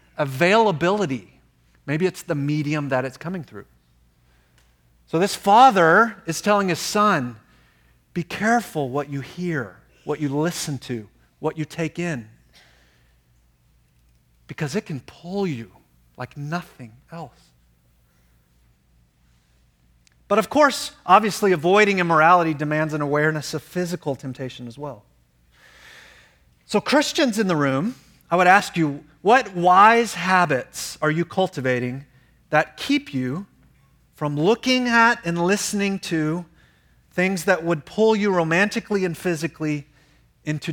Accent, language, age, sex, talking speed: American, English, 40-59, male, 125 wpm